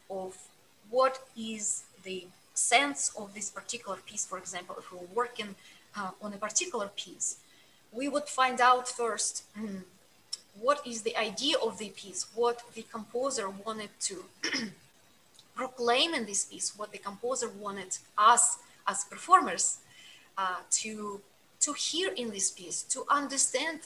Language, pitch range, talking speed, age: English, 210-255 Hz, 145 wpm, 20-39